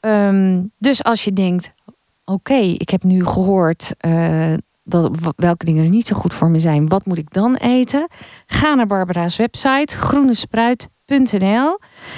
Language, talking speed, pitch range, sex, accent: Dutch, 160 wpm, 170-220 Hz, female, Dutch